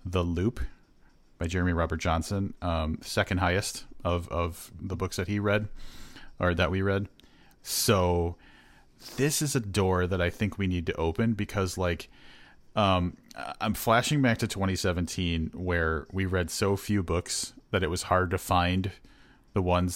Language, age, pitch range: English, 30-49, 85-100 Hz